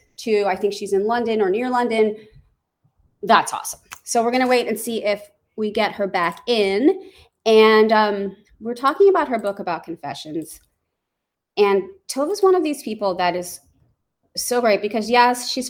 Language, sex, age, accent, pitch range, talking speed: English, female, 30-49, American, 180-245 Hz, 175 wpm